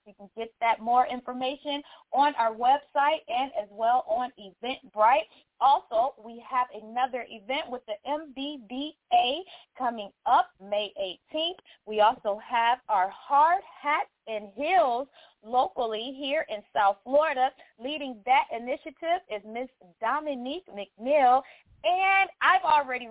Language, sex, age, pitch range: English, female, 20-39, 220-290 Hz